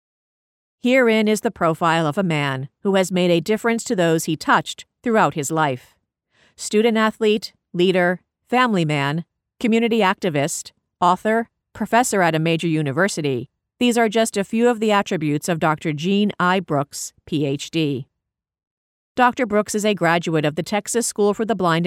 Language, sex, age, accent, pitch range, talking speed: English, female, 50-69, American, 160-215 Hz, 155 wpm